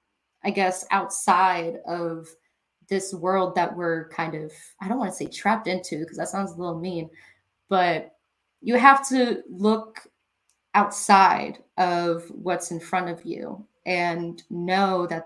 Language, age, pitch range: English, 20-39, 180-220 Hz